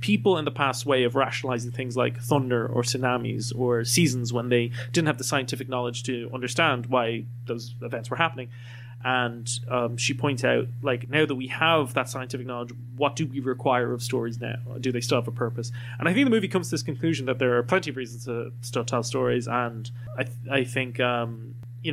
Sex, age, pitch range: male, 20-39, 120-135 Hz